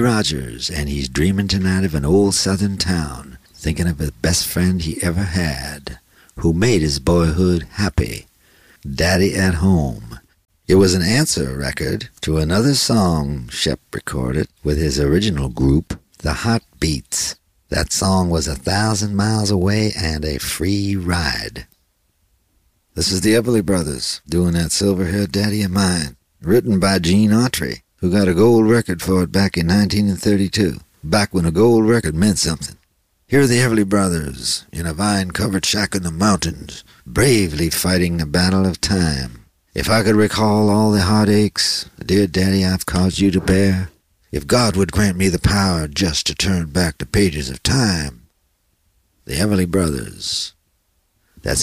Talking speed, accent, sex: 160 wpm, American, male